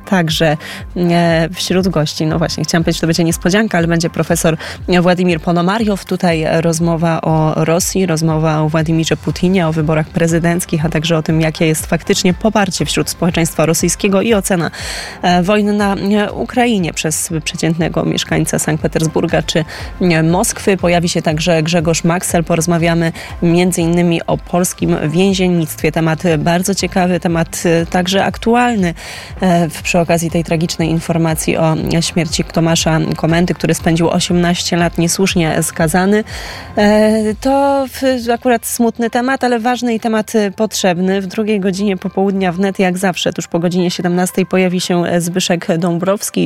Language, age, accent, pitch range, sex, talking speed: Polish, 20-39, native, 165-190 Hz, female, 135 wpm